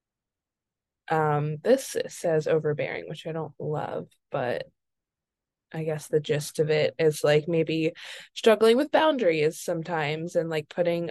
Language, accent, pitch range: English, American, 160-180 Hz